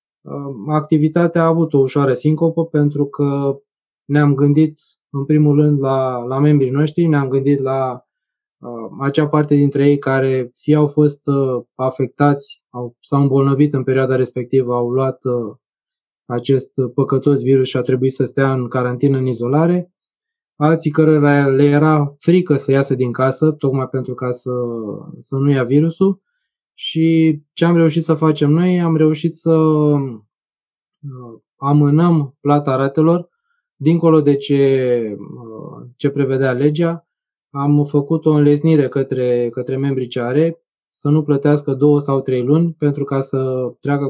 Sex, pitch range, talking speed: male, 130-155 Hz, 140 wpm